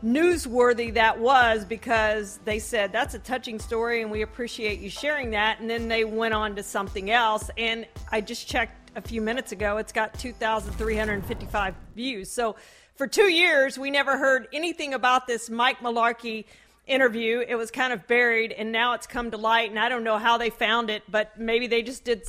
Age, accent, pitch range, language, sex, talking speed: 40-59, American, 220-250 Hz, English, female, 195 wpm